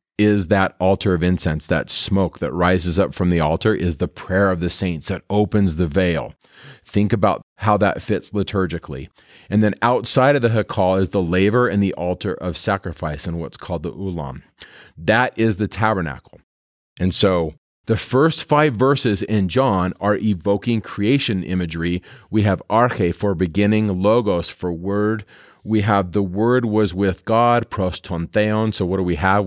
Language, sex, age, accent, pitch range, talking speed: English, male, 40-59, American, 90-110 Hz, 175 wpm